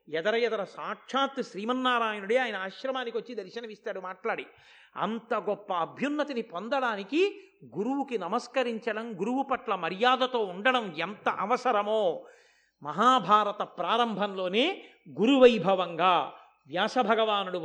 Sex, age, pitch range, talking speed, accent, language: male, 50-69, 205-255 Hz, 85 wpm, native, Telugu